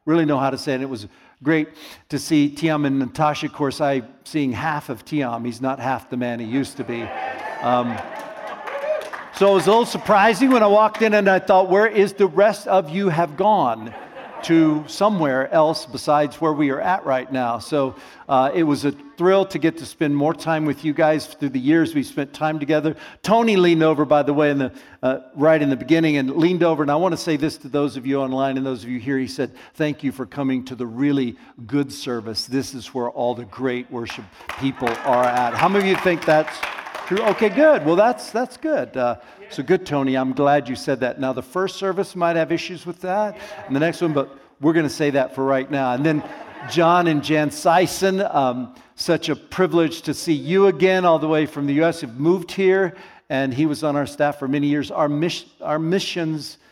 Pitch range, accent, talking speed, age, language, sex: 130-170 Hz, American, 225 wpm, 50-69, English, male